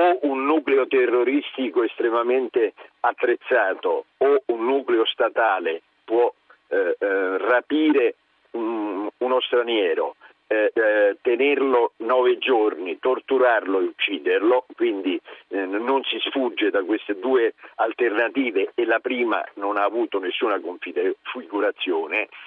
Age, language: 50-69, Italian